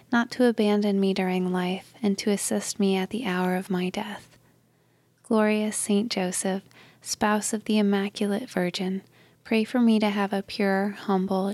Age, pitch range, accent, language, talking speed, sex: 20-39, 190-210 Hz, American, English, 165 wpm, female